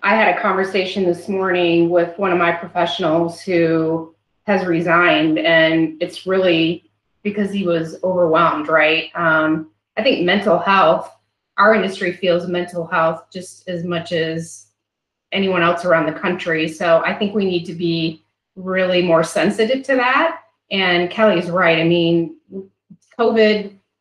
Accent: American